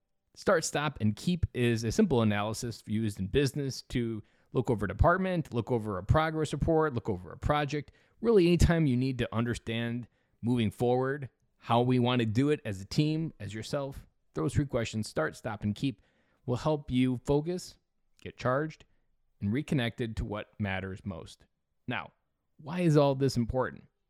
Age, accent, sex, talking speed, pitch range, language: 20-39, American, male, 170 wpm, 110-150 Hz, English